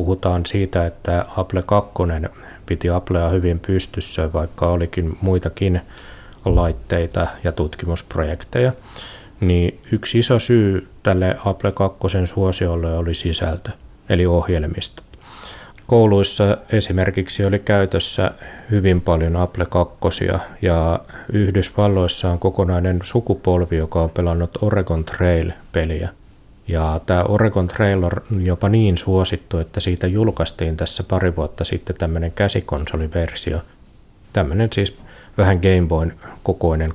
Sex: male